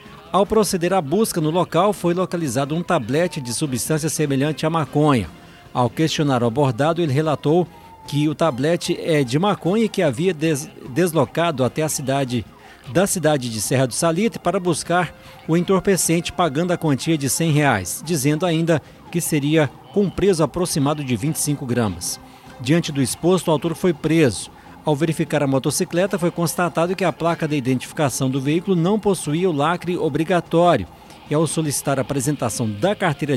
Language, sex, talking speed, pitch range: Portuguese, male, 165 wpm, 140-175 Hz